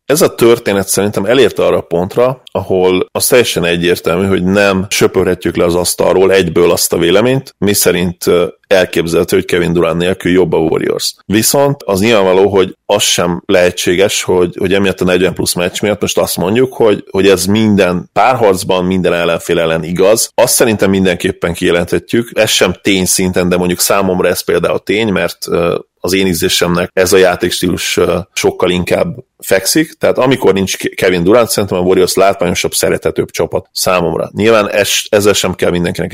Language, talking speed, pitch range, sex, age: Hungarian, 170 wpm, 90-100 Hz, male, 30-49